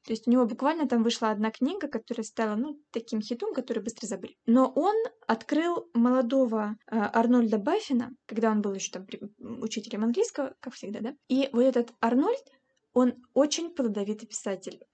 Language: Russian